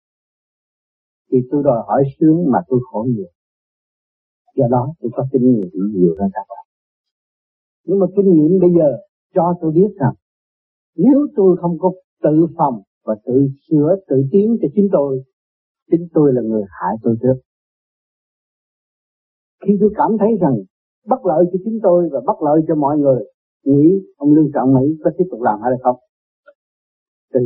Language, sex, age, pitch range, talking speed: Vietnamese, male, 50-69, 130-190 Hz, 170 wpm